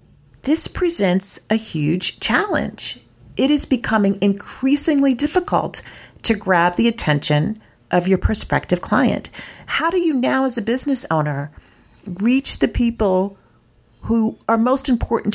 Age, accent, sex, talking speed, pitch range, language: 40-59, American, female, 130 wpm, 170-245 Hz, English